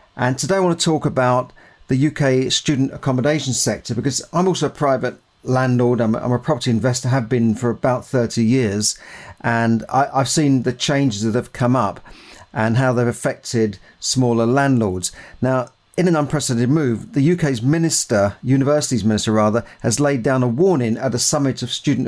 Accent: British